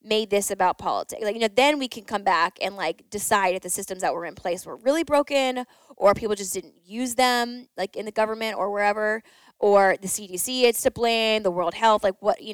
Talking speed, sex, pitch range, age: 235 wpm, female, 185-230 Hz, 10-29